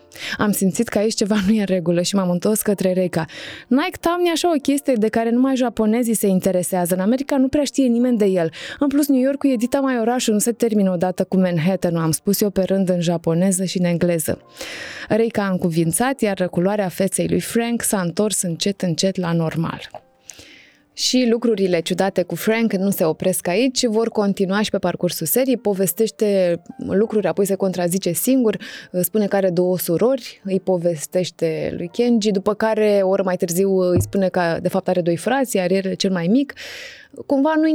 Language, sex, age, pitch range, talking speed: Romanian, female, 20-39, 180-230 Hz, 195 wpm